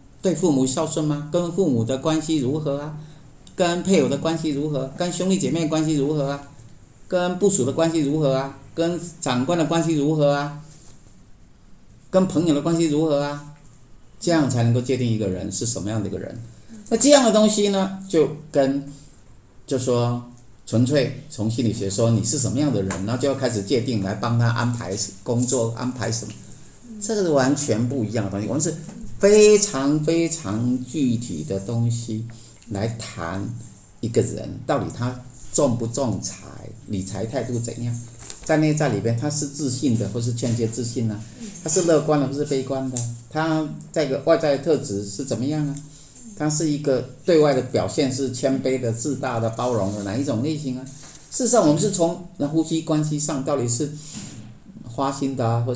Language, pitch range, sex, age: Chinese, 115-155 Hz, male, 50-69